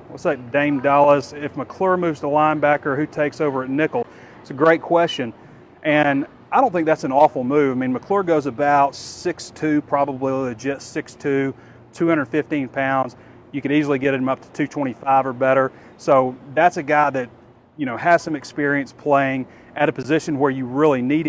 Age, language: 30-49, English